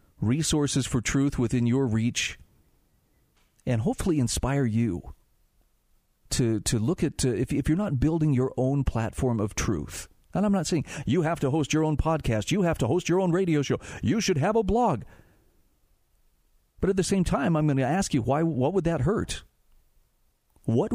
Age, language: 40-59, English